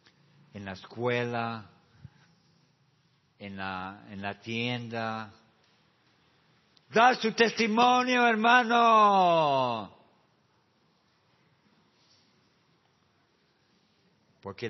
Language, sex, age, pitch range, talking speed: Spanish, male, 50-69, 95-130 Hz, 55 wpm